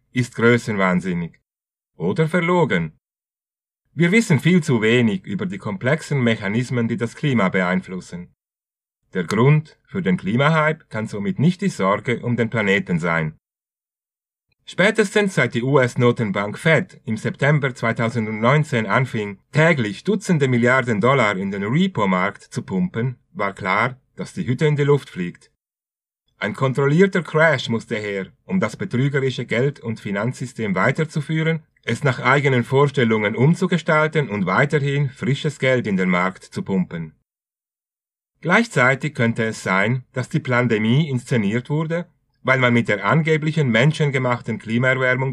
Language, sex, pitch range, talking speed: German, male, 115-155 Hz, 130 wpm